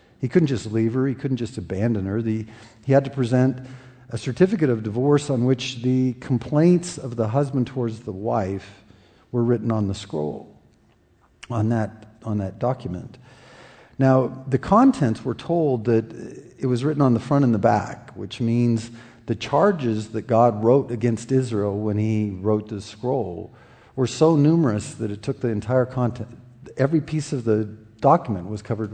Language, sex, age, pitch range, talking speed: English, male, 50-69, 110-135 Hz, 175 wpm